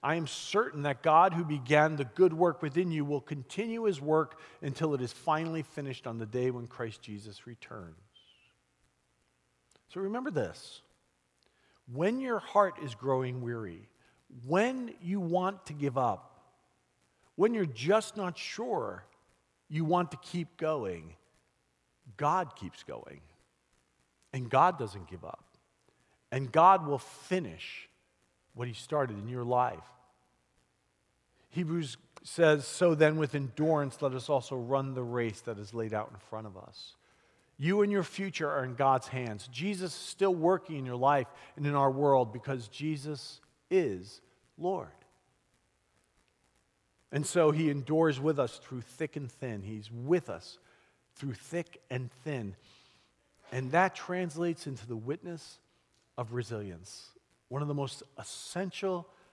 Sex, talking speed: male, 145 wpm